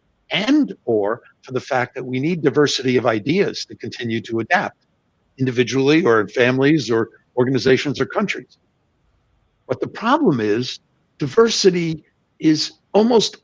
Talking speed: 135 wpm